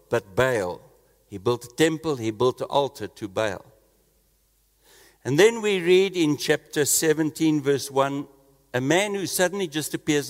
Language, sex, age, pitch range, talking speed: English, male, 60-79, 135-185 Hz, 155 wpm